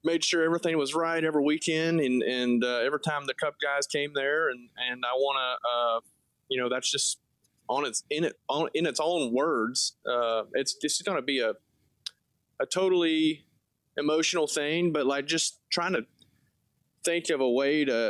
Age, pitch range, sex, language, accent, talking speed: 30-49, 125-155 Hz, male, English, American, 185 wpm